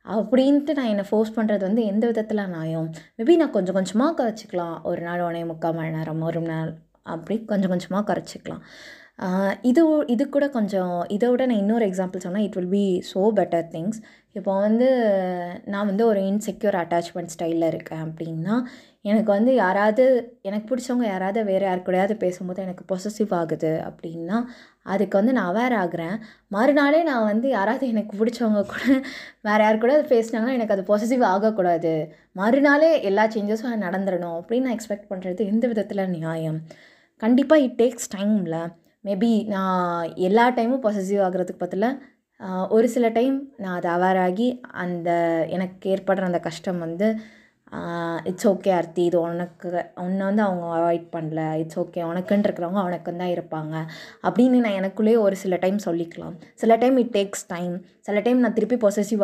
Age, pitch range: 20-39, 175-230 Hz